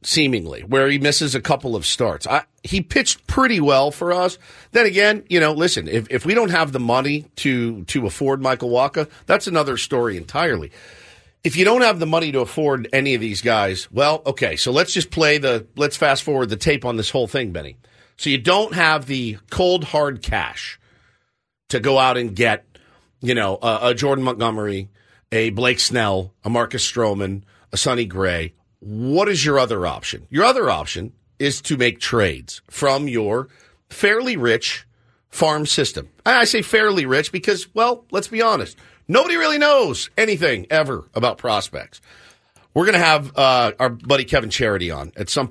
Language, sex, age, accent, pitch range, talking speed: English, male, 50-69, American, 115-155 Hz, 180 wpm